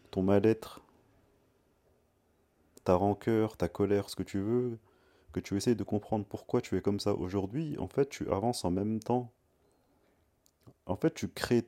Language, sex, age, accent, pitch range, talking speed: French, male, 30-49, French, 90-110 Hz, 165 wpm